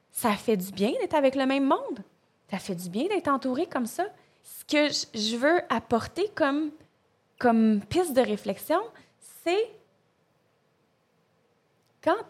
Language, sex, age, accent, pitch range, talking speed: French, female, 20-39, Canadian, 210-305 Hz, 140 wpm